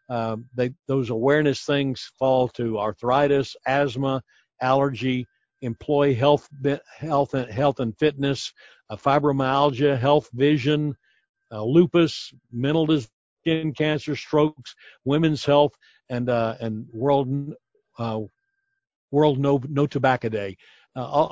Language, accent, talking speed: English, American, 120 wpm